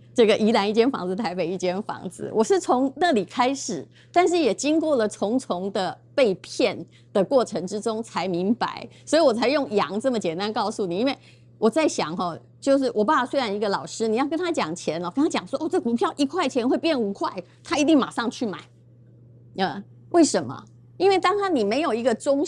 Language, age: Chinese, 30-49